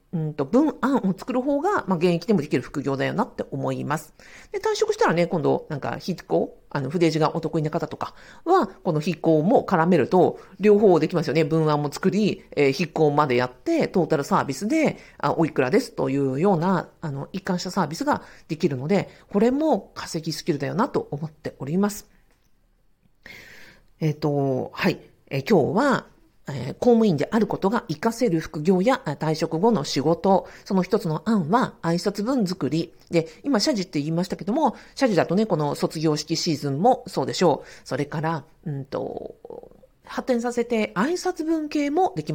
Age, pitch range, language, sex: 50-69, 155-225 Hz, Japanese, female